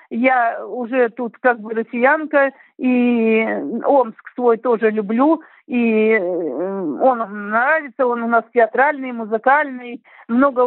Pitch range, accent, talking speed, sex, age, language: 220-265 Hz, native, 110 wpm, female, 50-69, Russian